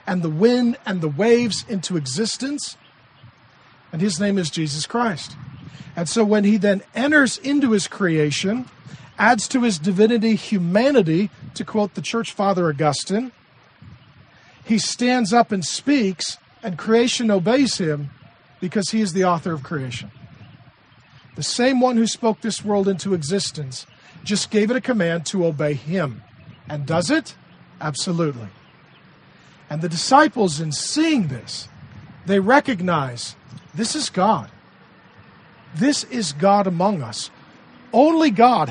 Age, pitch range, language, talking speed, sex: 40-59, 155-225 Hz, English, 140 wpm, male